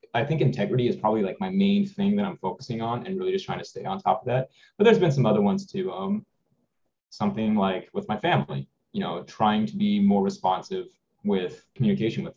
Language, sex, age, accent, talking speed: English, male, 20-39, American, 225 wpm